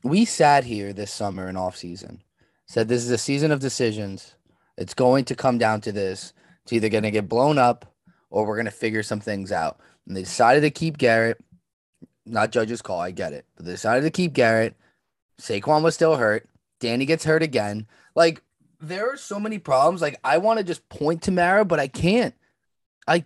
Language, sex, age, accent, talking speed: English, male, 20-39, American, 205 wpm